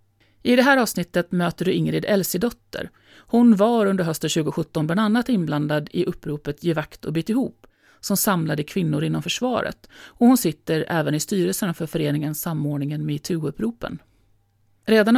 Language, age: Swedish, 40-59